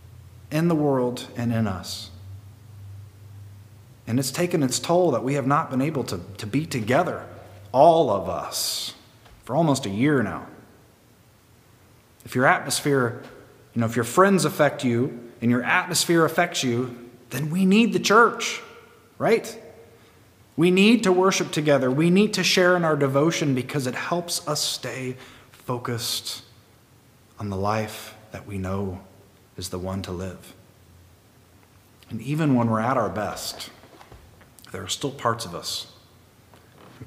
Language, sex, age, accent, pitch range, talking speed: English, male, 30-49, American, 110-150 Hz, 150 wpm